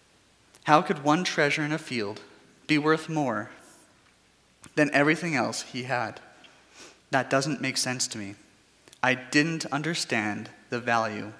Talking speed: 135 wpm